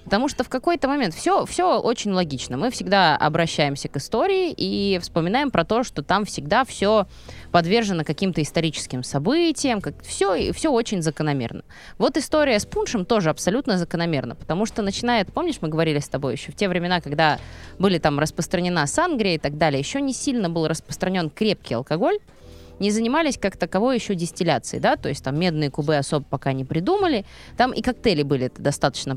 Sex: female